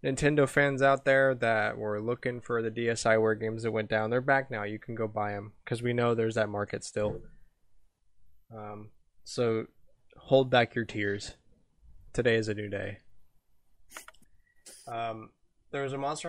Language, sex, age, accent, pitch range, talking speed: English, male, 20-39, American, 110-130 Hz, 160 wpm